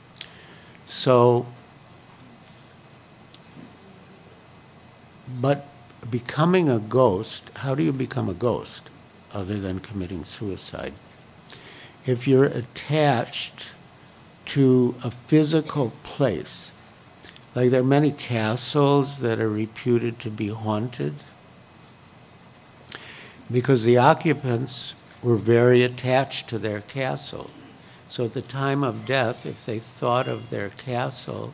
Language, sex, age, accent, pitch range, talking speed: English, male, 60-79, American, 110-135 Hz, 105 wpm